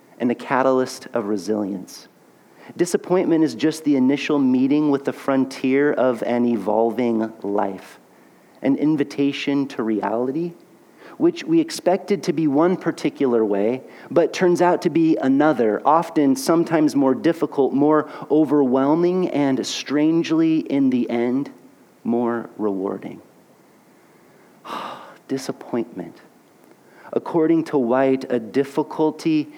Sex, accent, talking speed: male, American, 110 wpm